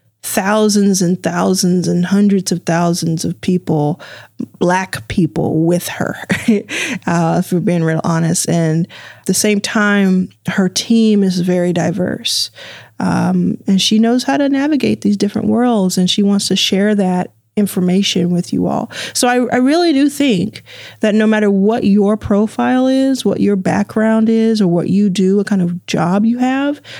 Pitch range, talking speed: 170-215 Hz, 170 wpm